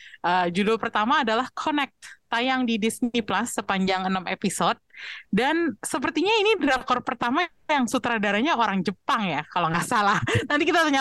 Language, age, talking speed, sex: Indonesian, 20-39, 155 wpm, female